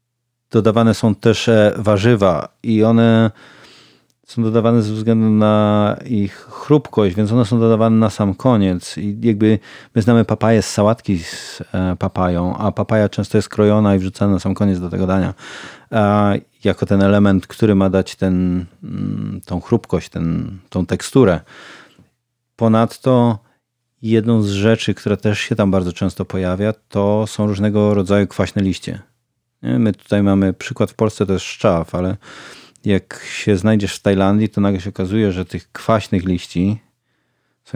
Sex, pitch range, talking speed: male, 95-115 Hz, 150 wpm